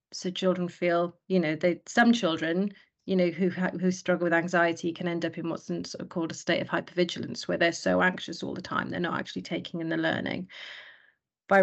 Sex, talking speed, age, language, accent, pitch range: female, 220 wpm, 30-49, English, British, 165-185 Hz